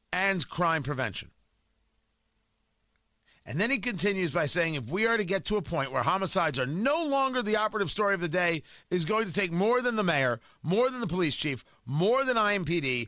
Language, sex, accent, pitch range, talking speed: English, male, American, 160-210 Hz, 200 wpm